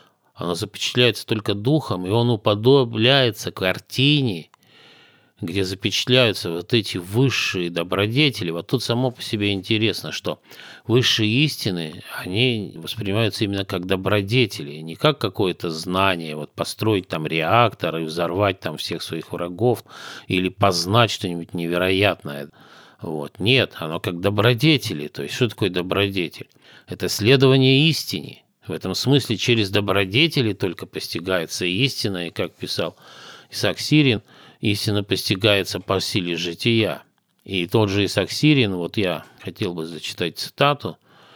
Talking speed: 125 wpm